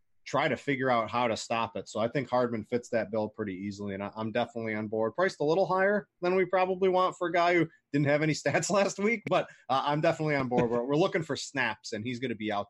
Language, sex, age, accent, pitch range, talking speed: English, male, 30-49, American, 115-155 Hz, 265 wpm